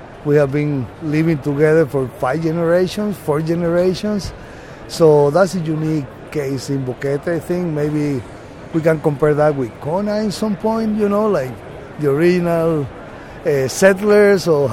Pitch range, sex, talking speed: 140-170 Hz, male, 150 wpm